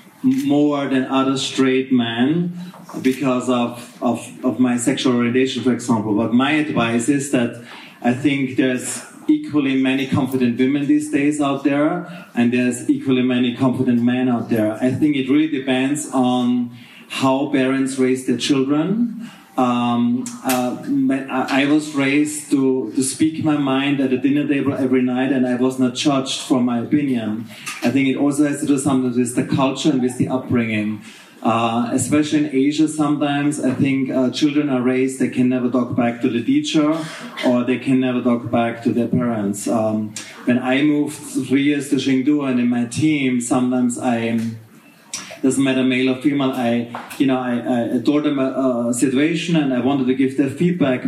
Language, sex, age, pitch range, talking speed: English, male, 30-49, 125-145 Hz, 175 wpm